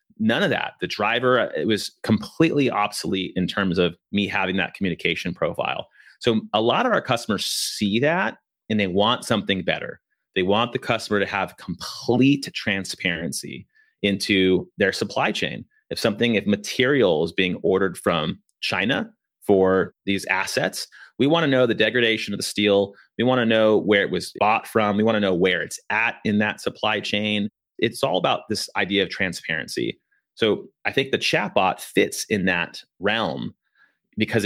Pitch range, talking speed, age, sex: 95-105 Hz, 175 wpm, 30-49, male